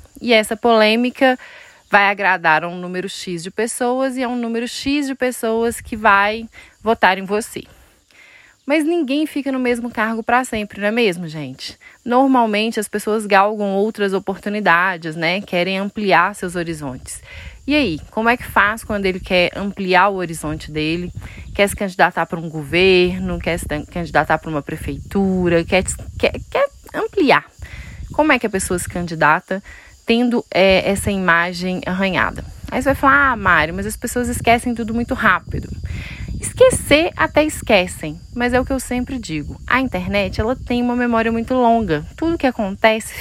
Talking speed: 165 wpm